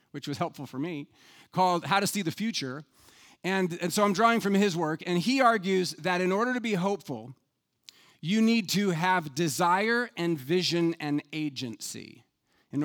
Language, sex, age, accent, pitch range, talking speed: English, male, 40-59, American, 150-205 Hz, 180 wpm